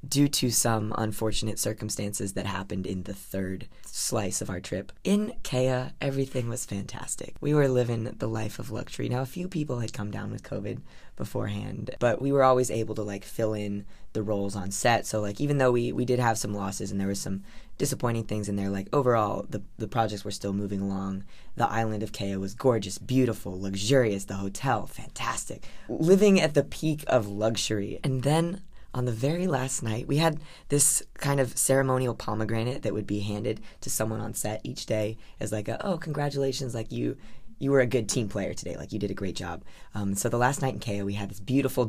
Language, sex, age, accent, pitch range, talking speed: English, female, 20-39, American, 100-130 Hz, 210 wpm